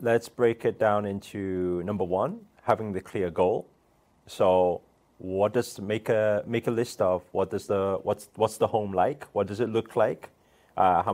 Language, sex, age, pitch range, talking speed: English, male, 30-49, 90-120 Hz, 190 wpm